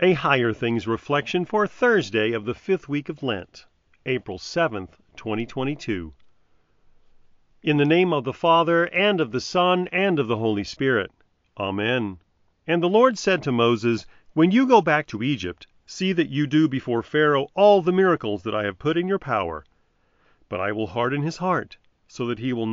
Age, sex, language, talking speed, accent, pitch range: 40-59, male, English, 180 wpm, American, 105-160 Hz